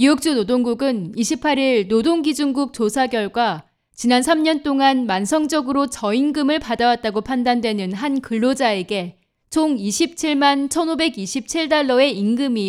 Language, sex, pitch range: Korean, female, 215-280 Hz